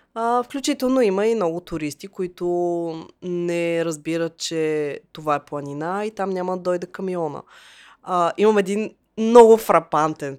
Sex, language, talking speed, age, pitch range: female, Bulgarian, 140 wpm, 20-39, 155-225 Hz